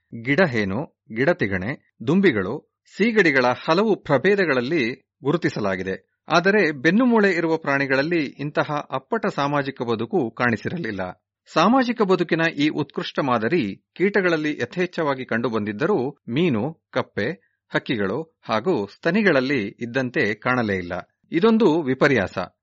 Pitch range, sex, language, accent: 115-170 Hz, male, Kannada, native